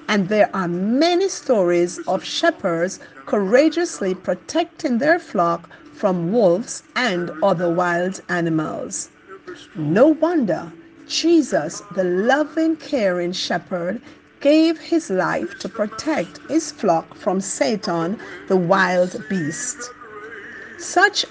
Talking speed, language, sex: 105 wpm, English, female